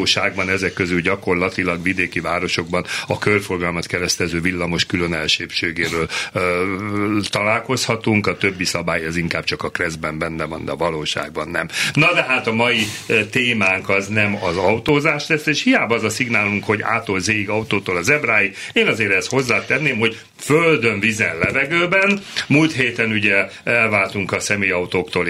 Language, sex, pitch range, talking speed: Hungarian, male, 95-135 Hz, 155 wpm